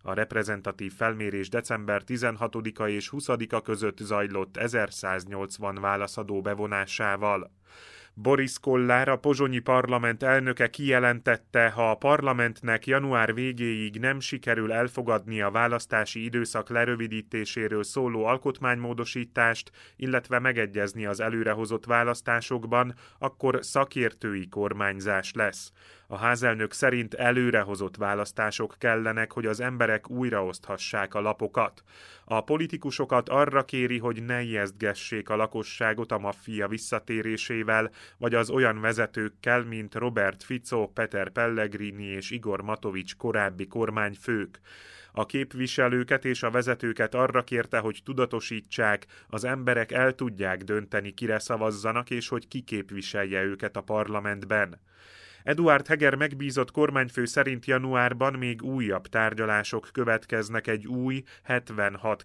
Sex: male